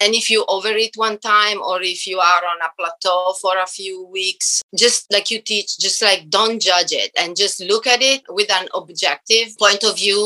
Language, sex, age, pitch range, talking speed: English, female, 30-49, 180-225 Hz, 220 wpm